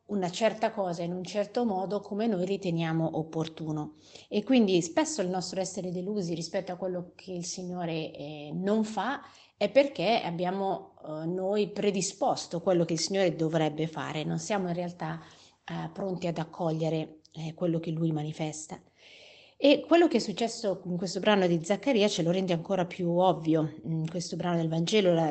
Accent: native